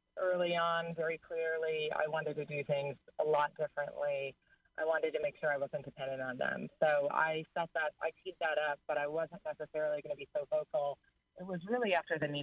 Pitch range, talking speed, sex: 140-155 Hz, 215 wpm, female